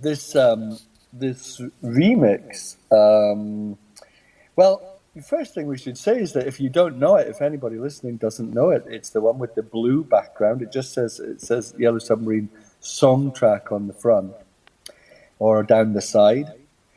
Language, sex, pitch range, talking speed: English, male, 105-130 Hz, 170 wpm